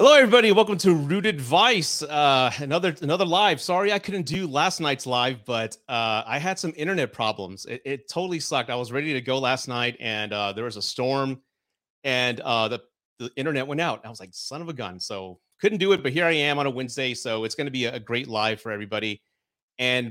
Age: 30-49